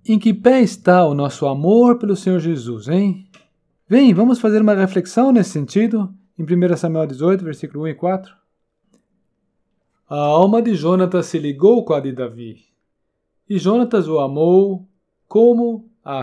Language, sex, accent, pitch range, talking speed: Portuguese, male, Brazilian, 145-205 Hz, 155 wpm